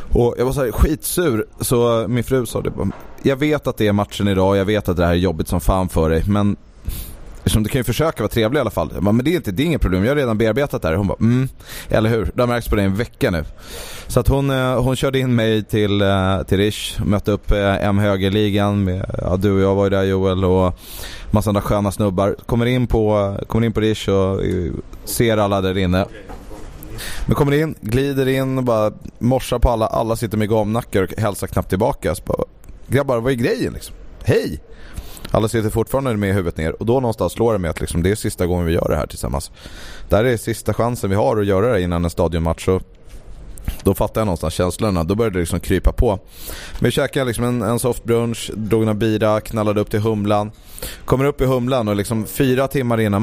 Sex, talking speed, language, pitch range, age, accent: male, 225 wpm, English, 95-115 Hz, 20-39, Swedish